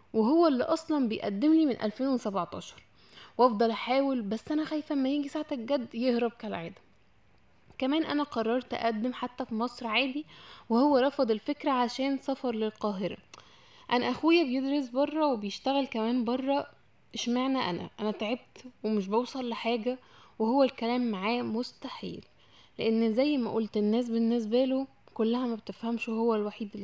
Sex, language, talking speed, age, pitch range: female, Arabic, 135 wpm, 10-29, 225-260 Hz